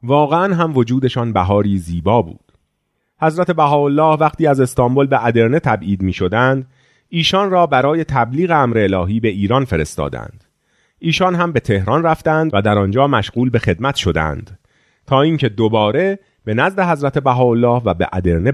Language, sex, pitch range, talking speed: Persian, male, 105-155 Hz, 150 wpm